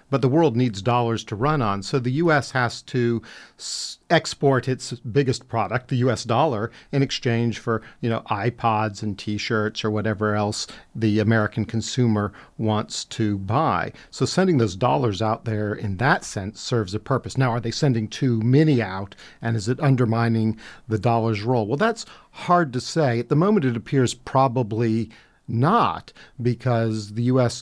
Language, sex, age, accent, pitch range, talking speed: English, male, 50-69, American, 110-130 Hz, 170 wpm